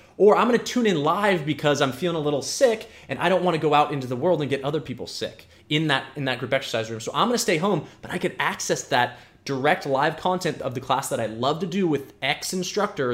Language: English